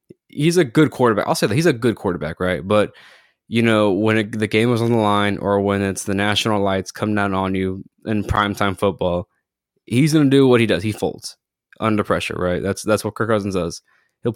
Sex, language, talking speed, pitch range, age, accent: male, English, 230 wpm, 95-110 Hz, 10-29, American